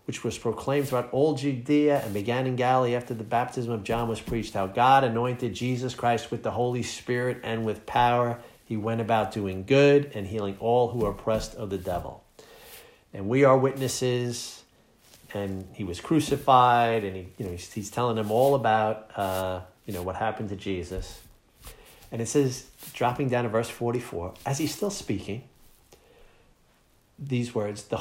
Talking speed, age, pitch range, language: 180 wpm, 50-69, 110-150 Hz, English